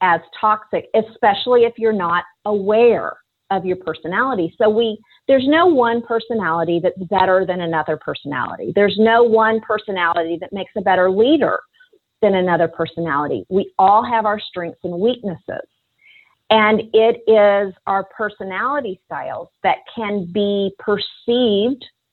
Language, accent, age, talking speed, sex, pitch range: English, American, 40-59, 135 wpm, female, 175-225 Hz